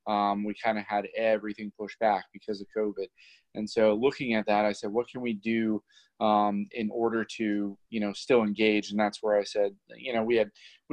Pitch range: 105-120 Hz